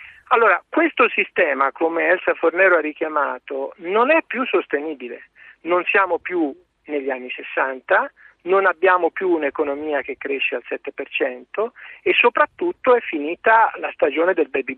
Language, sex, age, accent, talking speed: Italian, male, 50-69, native, 140 wpm